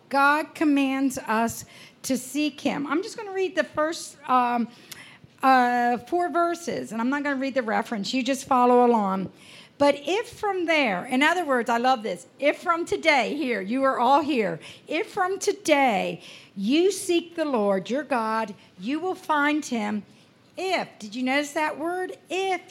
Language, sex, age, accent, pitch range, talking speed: English, female, 50-69, American, 245-335 Hz, 175 wpm